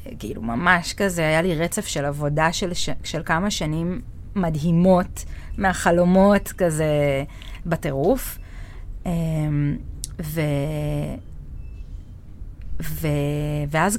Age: 30-49